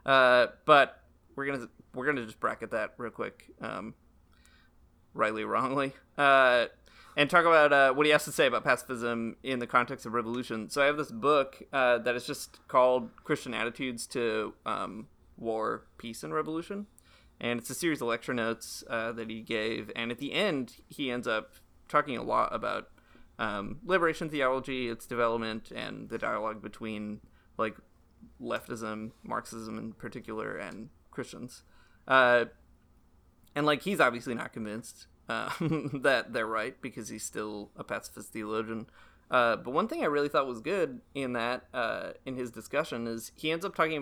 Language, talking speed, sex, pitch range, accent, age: English, 170 wpm, male, 110-135 Hz, American, 20-39